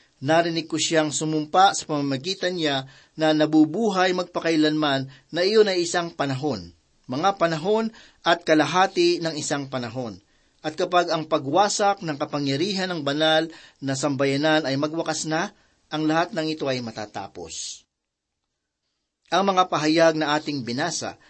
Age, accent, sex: 40-59, native, male